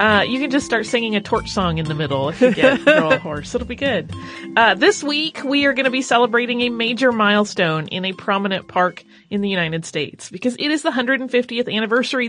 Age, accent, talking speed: 30-49, American, 225 wpm